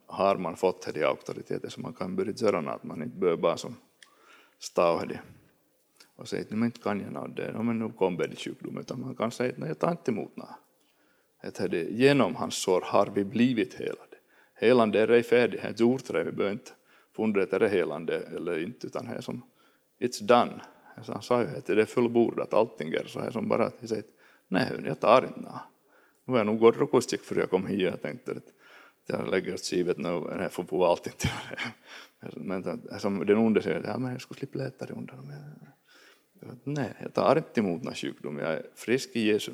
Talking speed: 230 wpm